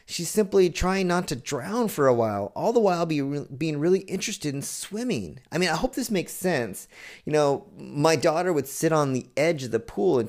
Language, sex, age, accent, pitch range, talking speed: English, male, 30-49, American, 120-170 Hz, 215 wpm